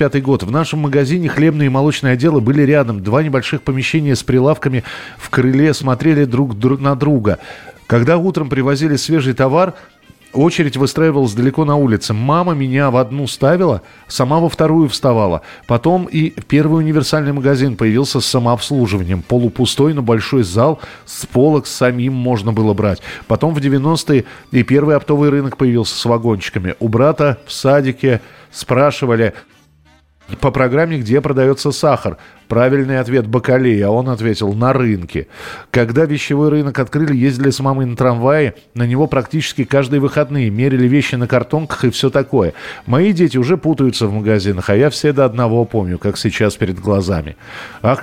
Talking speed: 155 wpm